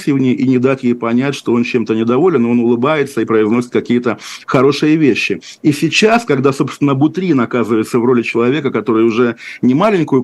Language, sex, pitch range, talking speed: Russian, male, 120-145 Hz, 170 wpm